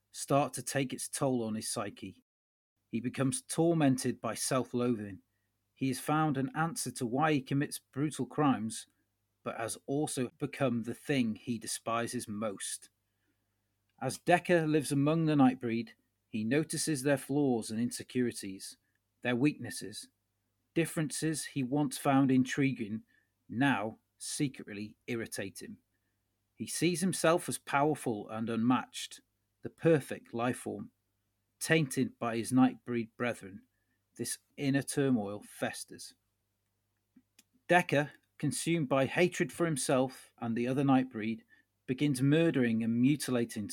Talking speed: 120 wpm